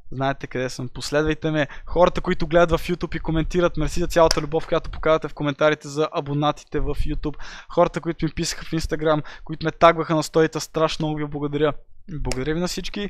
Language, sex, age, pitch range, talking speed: Bulgarian, male, 20-39, 145-170 Hz, 195 wpm